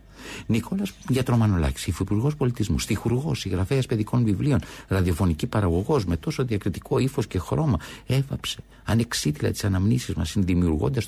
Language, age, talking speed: Greek, 60-79, 120 wpm